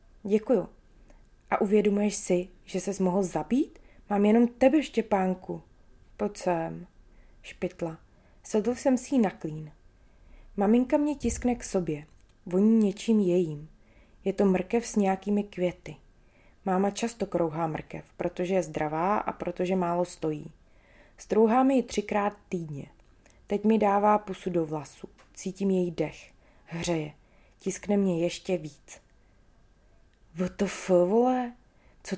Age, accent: 20-39, native